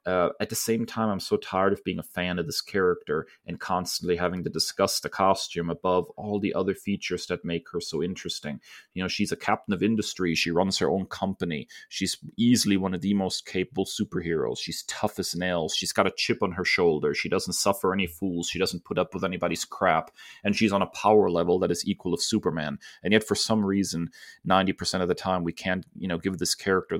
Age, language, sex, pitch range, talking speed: 30-49, English, male, 85-100 Hz, 225 wpm